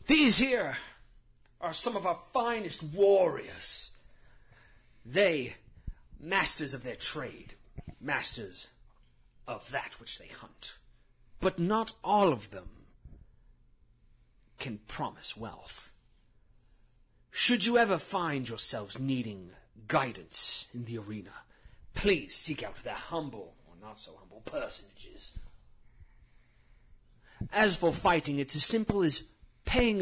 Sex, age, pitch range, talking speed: male, 30-49, 115-185 Hz, 110 wpm